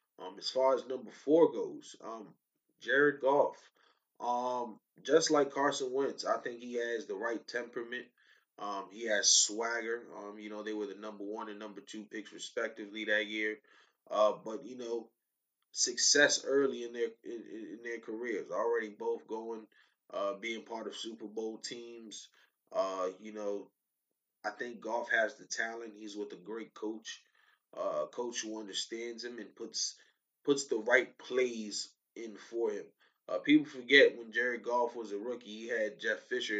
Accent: American